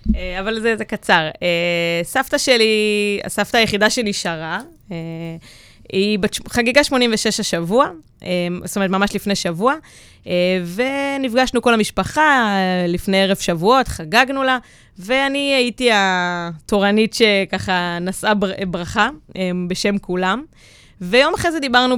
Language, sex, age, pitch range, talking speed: Hebrew, female, 20-39, 180-255 Hz, 105 wpm